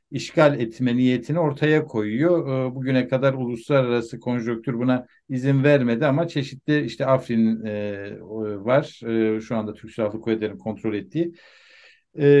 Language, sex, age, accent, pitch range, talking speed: Turkish, male, 60-79, native, 115-140 Hz, 115 wpm